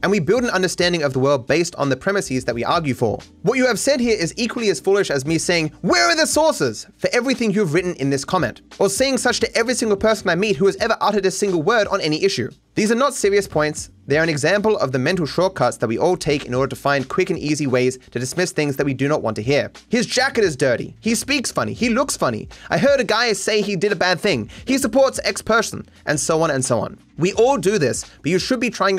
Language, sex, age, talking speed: English, male, 20-39, 275 wpm